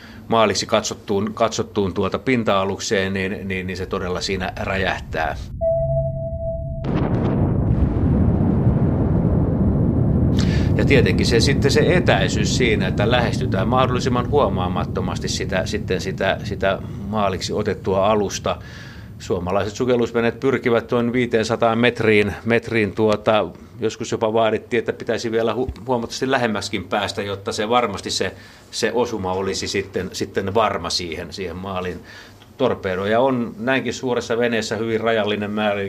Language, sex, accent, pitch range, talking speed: Finnish, male, native, 100-115 Hz, 115 wpm